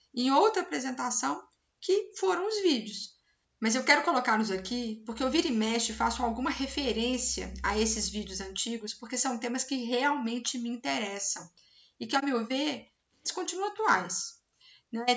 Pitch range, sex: 220-265 Hz, female